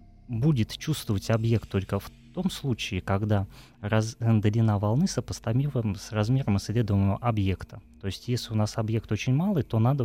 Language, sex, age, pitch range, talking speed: Russian, male, 20-39, 100-120 Hz, 150 wpm